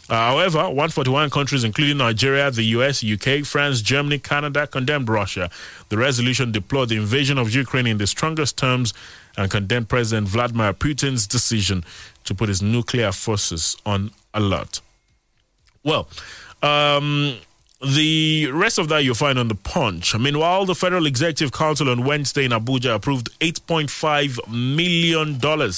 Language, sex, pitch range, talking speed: English, male, 105-135 Hz, 140 wpm